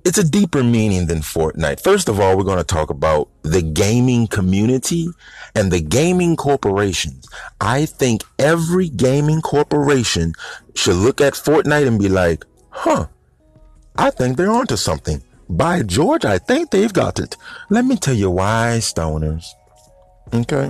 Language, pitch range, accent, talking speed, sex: English, 85-130 Hz, American, 155 wpm, male